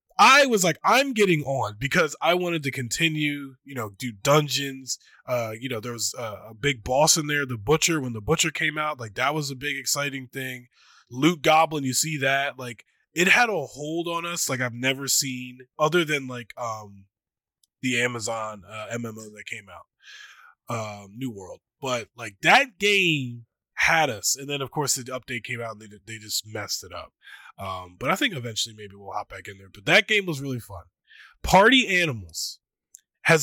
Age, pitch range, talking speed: 20-39, 115-155 Hz, 200 wpm